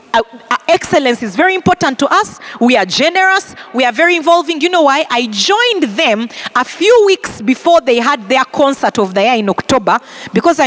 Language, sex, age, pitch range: English, female, 40-59, 240-335 Hz